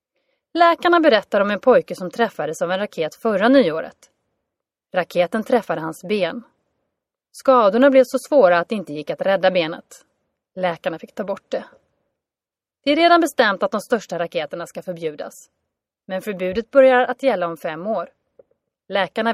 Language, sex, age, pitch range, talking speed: Swedish, female, 30-49, 180-275 Hz, 160 wpm